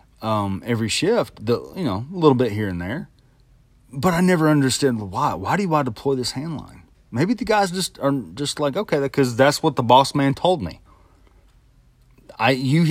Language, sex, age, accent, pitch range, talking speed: English, male, 30-49, American, 100-140 Hz, 190 wpm